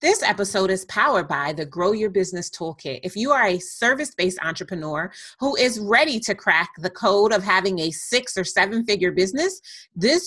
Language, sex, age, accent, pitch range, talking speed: English, female, 30-49, American, 175-235 Hz, 180 wpm